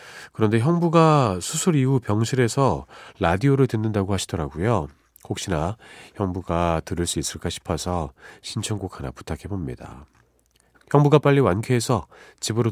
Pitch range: 80-120 Hz